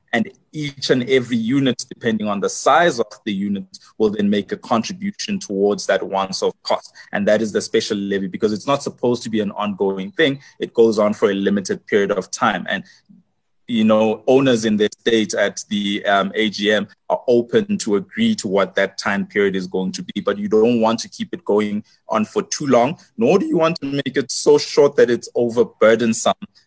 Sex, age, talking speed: male, 20-39, 210 wpm